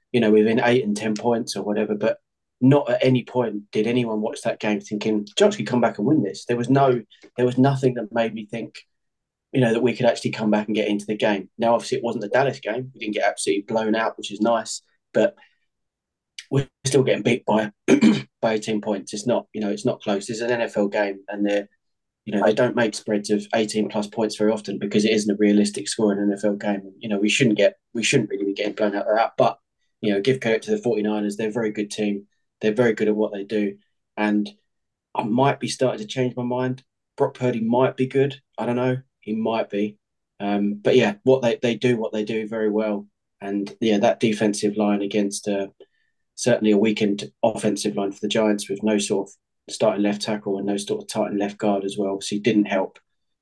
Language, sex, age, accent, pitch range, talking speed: English, male, 20-39, British, 105-115 Hz, 235 wpm